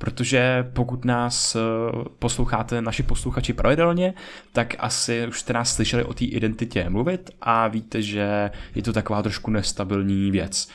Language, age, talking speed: Czech, 20-39, 145 wpm